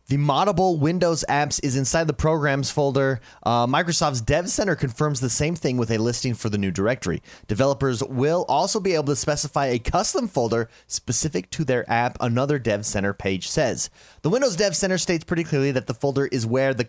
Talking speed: 200 wpm